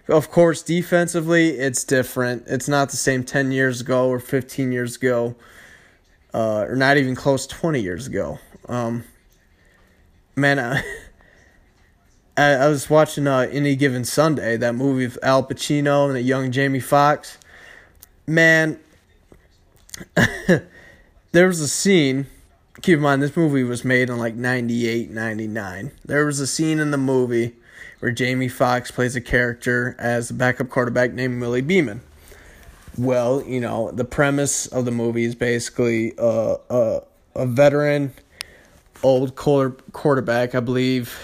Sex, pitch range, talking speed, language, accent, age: male, 120-140 Hz, 140 wpm, English, American, 20-39